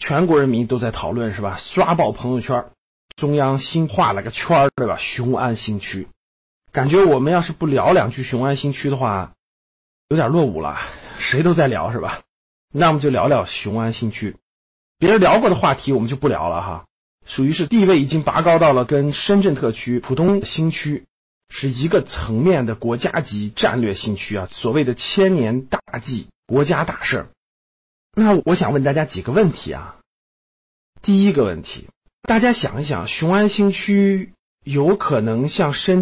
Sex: male